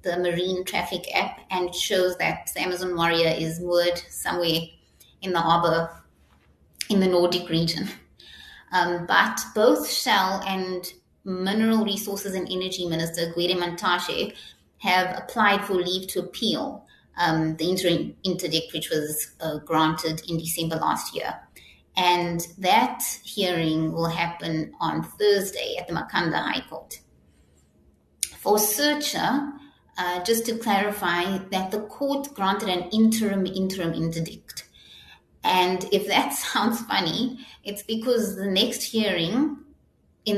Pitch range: 165-200 Hz